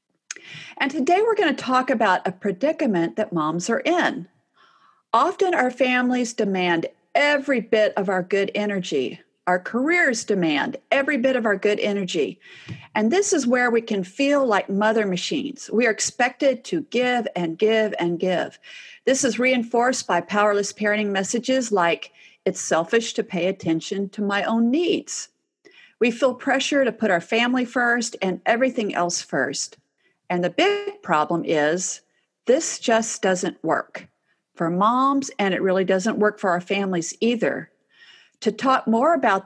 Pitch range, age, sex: 185-265 Hz, 50-69, female